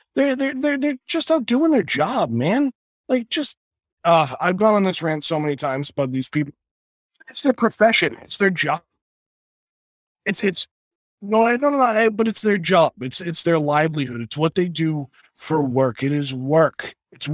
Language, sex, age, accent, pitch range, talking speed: English, male, 20-39, American, 135-195 Hz, 195 wpm